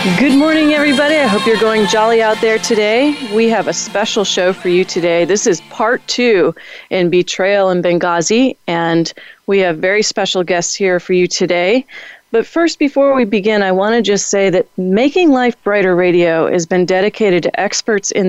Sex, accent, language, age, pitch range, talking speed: female, American, English, 30-49, 180-225 Hz, 190 wpm